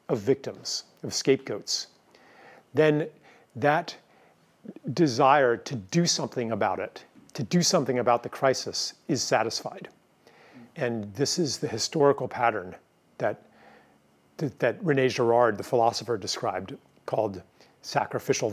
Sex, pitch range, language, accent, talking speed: male, 120-145 Hz, English, American, 115 wpm